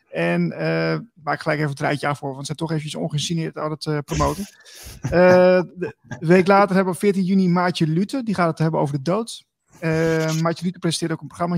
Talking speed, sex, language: 240 wpm, male, Dutch